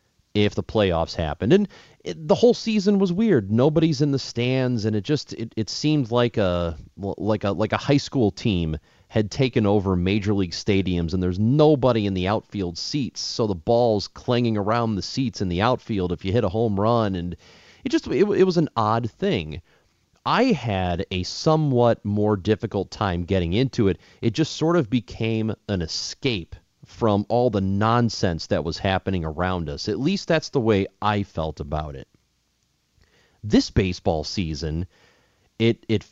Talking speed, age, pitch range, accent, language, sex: 180 wpm, 30-49, 90-120 Hz, American, English, male